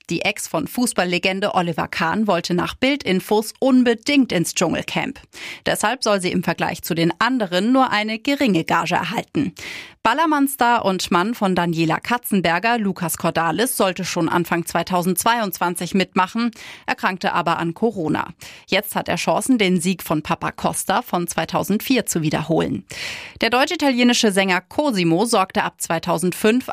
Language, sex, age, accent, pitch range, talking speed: German, female, 30-49, German, 175-235 Hz, 140 wpm